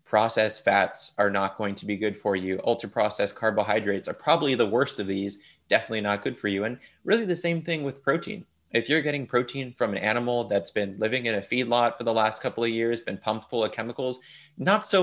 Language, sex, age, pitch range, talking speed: English, male, 30-49, 105-125 Hz, 230 wpm